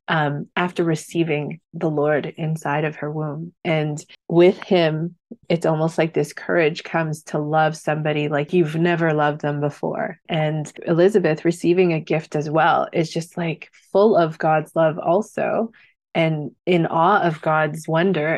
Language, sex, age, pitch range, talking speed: English, female, 20-39, 155-175 Hz, 155 wpm